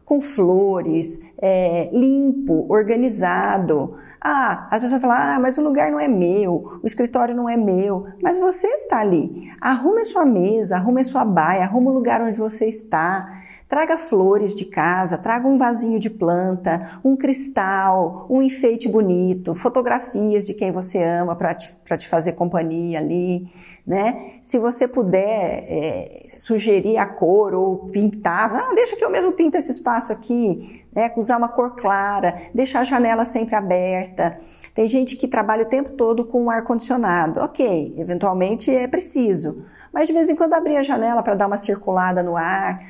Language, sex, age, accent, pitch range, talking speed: Portuguese, female, 40-59, Brazilian, 185-250 Hz, 165 wpm